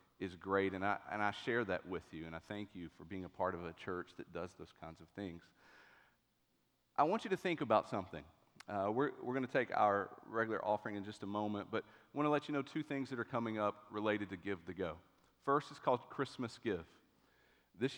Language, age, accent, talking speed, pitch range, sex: English, 40-59, American, 235 wpm, 100-125 Hz, male